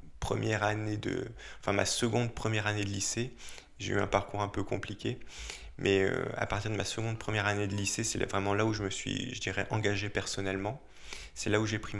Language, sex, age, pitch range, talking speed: French, male, 20-39, 95-110 Hz, 220 wpm